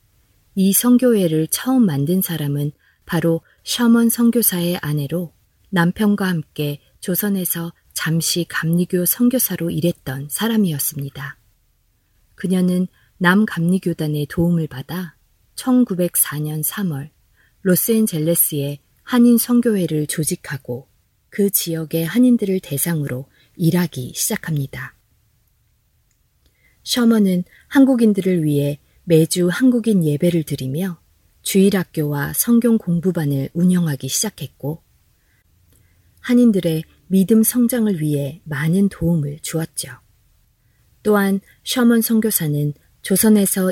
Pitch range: 145-200 Hz